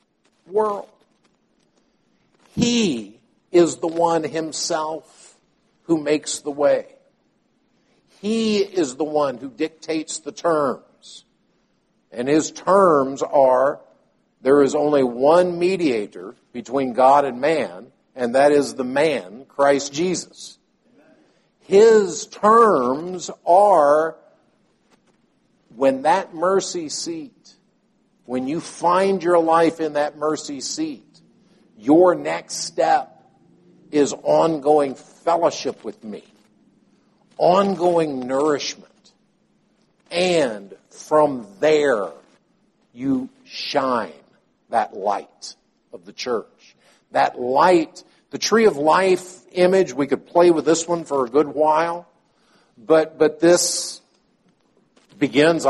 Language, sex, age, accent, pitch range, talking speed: English, male, 50-69, American, 150-200 Hz, 100 wpm